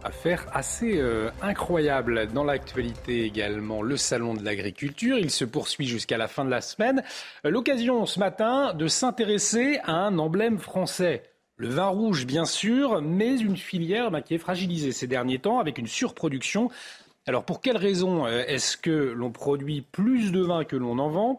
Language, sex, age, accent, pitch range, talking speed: French, male, 40-59, French, 145-205 Hz, 175 wpm